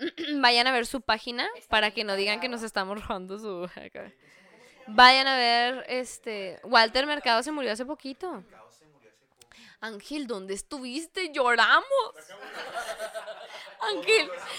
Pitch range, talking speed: 245-340 Hz, 125 wpm